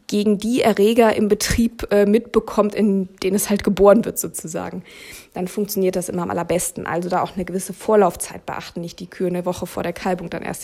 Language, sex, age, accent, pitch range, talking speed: German, female, 20-39, German, 190-220 Hz, 205 wpm